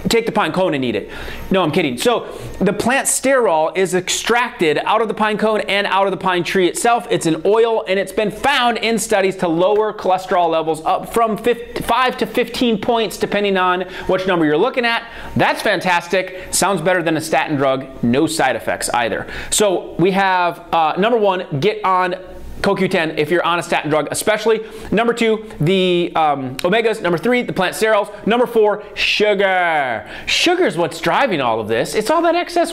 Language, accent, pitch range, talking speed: English, American, 180-235 Hz, 195 wpm